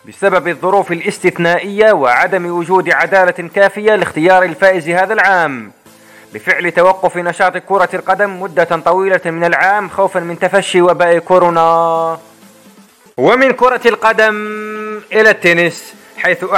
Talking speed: 110 wpm